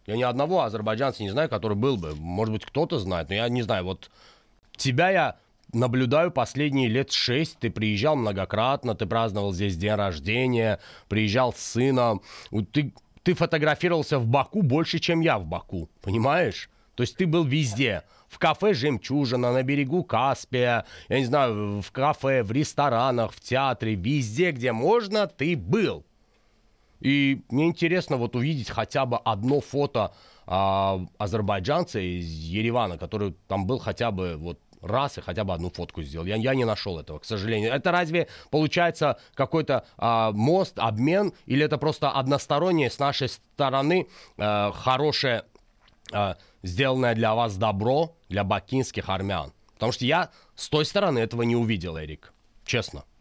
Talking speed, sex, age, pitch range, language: 150 wpm, male, 30-49, 105-145 Hz, Russian